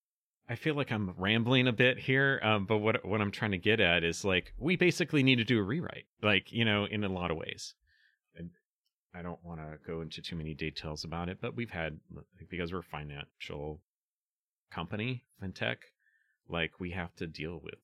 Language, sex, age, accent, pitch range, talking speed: English, male, 30-49, American, 75-95 Hz, 210 wpm